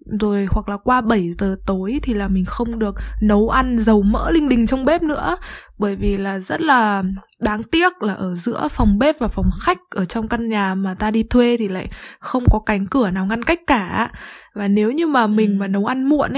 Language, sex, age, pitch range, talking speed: Vietnamese, female, 20-39, 205-265 Hz, 230 wpm